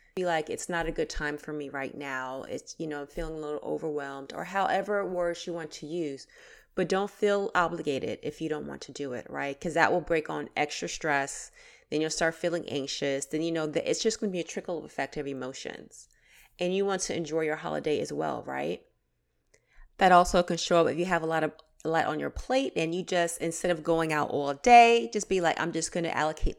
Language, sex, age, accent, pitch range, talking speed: English, female, 30-49, American, 150-180 Hz, 240 wpm